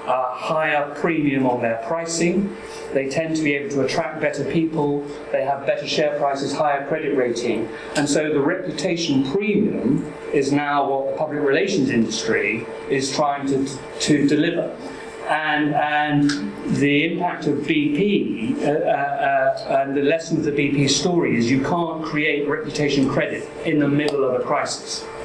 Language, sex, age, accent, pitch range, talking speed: English, male, 40-59, British, 140-155 Hz, 160 wpm